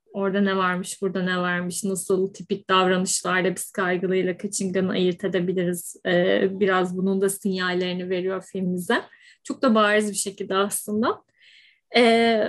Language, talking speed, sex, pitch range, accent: Turkish, 135 wpm, female, 190-230 Hz, native